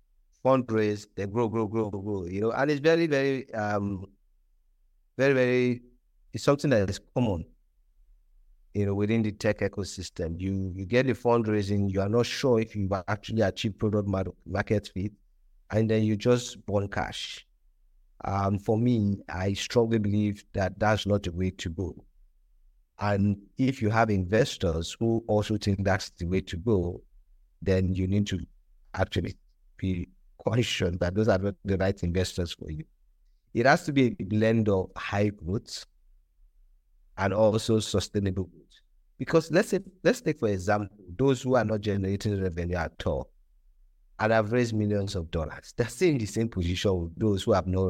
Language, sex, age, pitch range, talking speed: English, male, 50-69, 90-115 Hz, 170 wpm